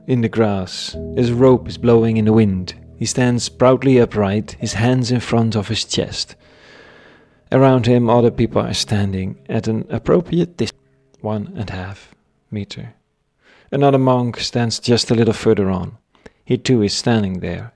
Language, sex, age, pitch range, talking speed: English, male, 40-59, 105-125 Hz, 165 wpm